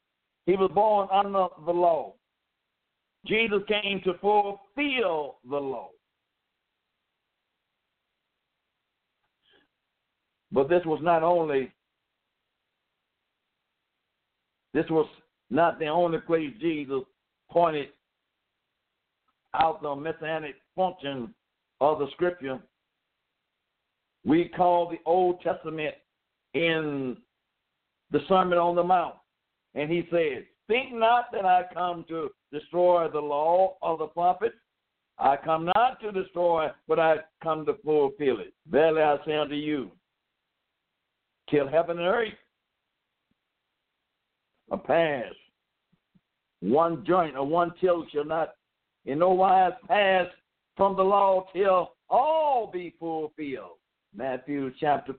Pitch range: 150-185 Hz